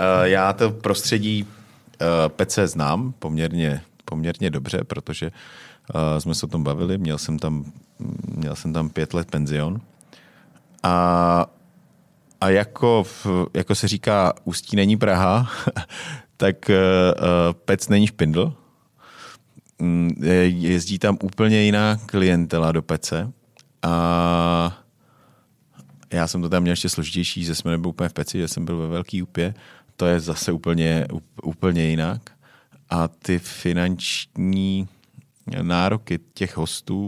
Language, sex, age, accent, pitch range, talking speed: Czech, male, 40-59, native, 85-100 Hz, 125 wpm